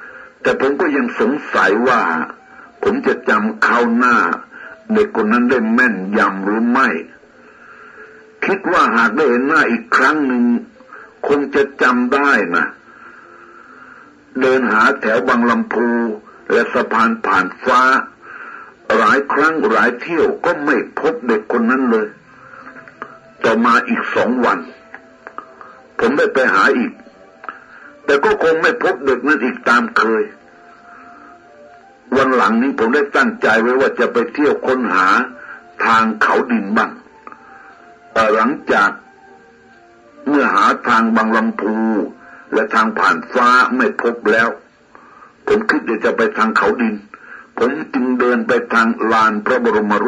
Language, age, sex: Thai, 60-79, male